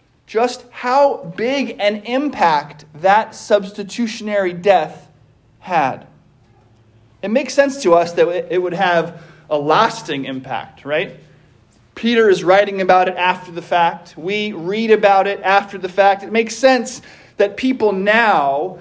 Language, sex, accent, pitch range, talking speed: English, male, American, 175-240 Hz, 135 wpm